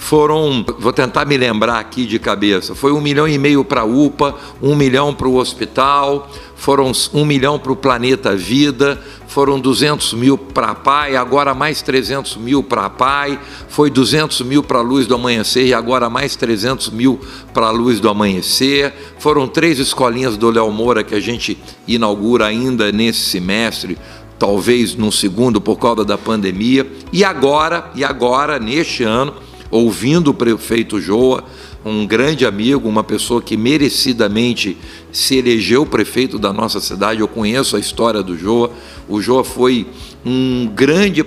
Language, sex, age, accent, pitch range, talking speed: Portuguese, male, 60-79, Brazilian, 110-135 Hz, 160 wpm